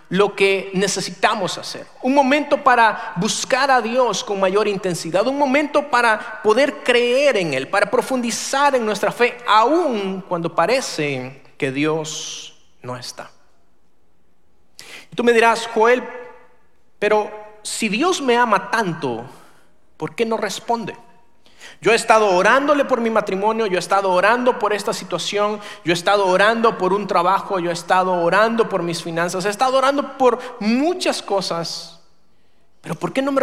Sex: male